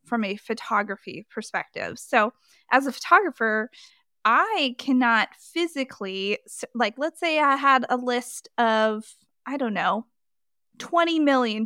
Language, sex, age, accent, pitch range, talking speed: English, female, 20-39, American, 220-265 Hz, 125 wpm